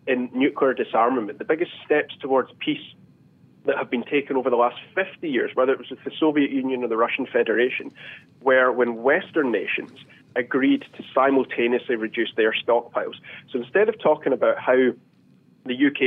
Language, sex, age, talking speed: English, male, 30-49, 170 wpm